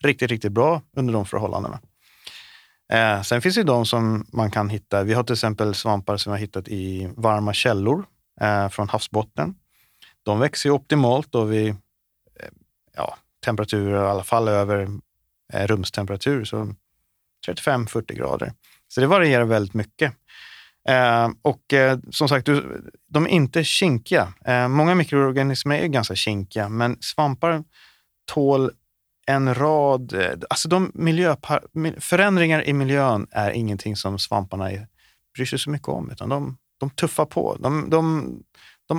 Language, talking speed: Swedish, 150 wpm